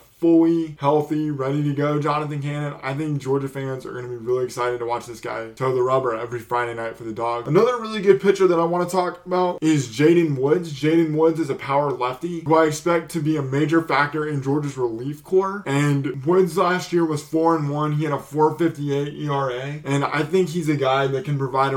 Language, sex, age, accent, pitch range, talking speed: English, male, 20-39, American, 130-155 Hz, 225 wpm